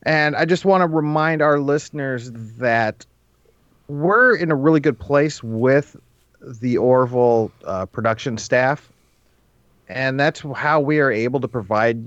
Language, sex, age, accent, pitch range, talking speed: English, male, 40-59, American, 115-145 Hz, 145 wpm